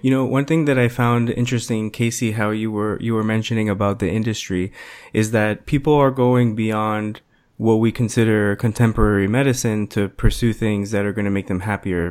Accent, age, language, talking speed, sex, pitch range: American, 20-39, English, 195 wpm, male, 105-120 Hz